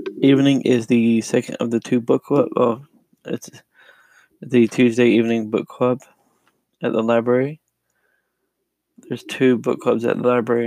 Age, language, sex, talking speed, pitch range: 20-39, English, male, 140 wpm, 120-150 Hz